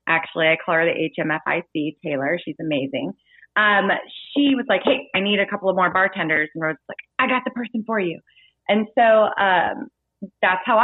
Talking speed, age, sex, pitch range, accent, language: 200 wpm, 30-49, female, 175-220 Hz, American, English